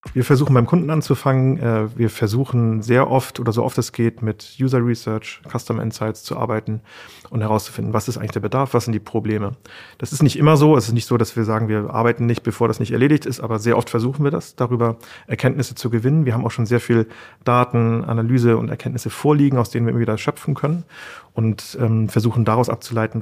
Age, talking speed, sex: 40-59, 215 wpm, male